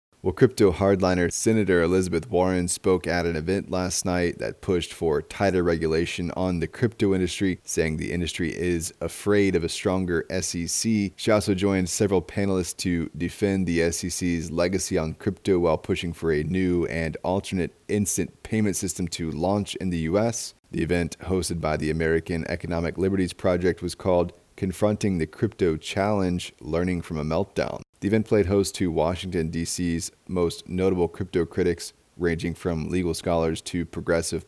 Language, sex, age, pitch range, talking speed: English, male, 30-49, 85-95 Hz, 160 wpm